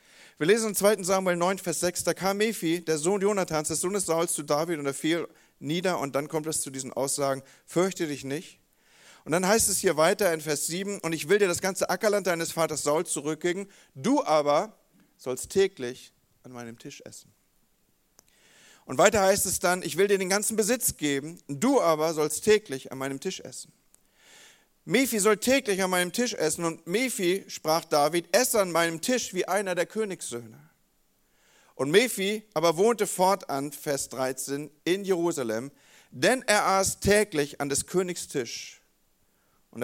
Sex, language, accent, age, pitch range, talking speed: male, German, German, 40-59, 140-190 Hz, 180 wpm